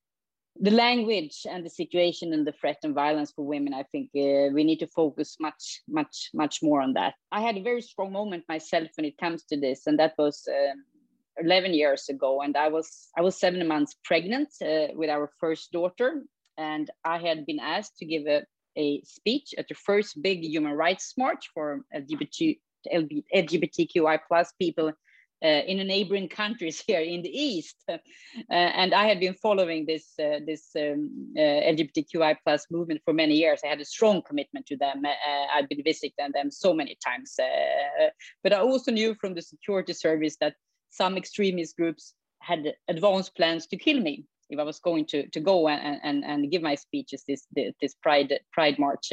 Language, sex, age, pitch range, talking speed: English, female, 30-49, 150-200 Hz, 195 wpm